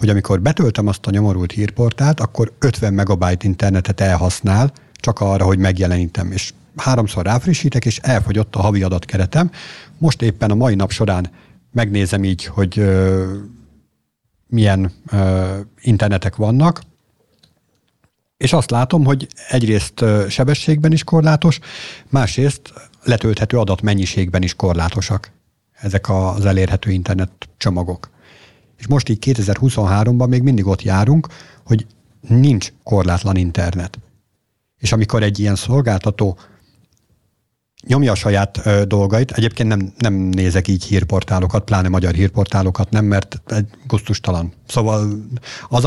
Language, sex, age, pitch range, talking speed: Hungarian, male, 60-79, 95-125 Hz, 120 wpm